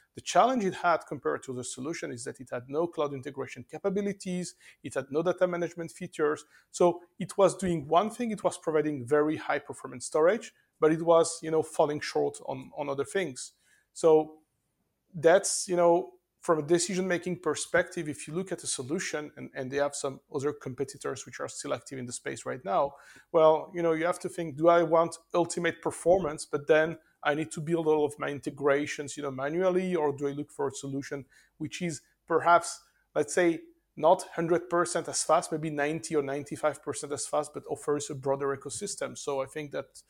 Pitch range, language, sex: 145-175 Hz, English, male